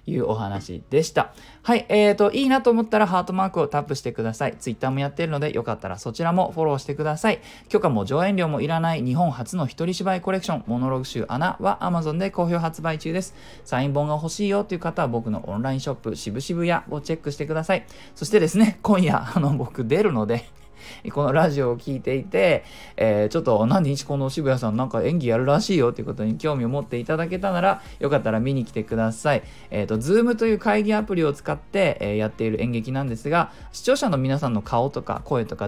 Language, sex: Japanese, male